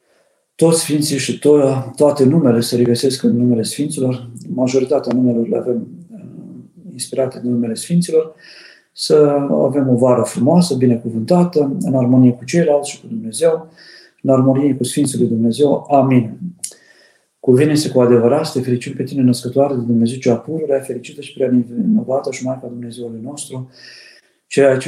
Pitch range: 125-145 Hz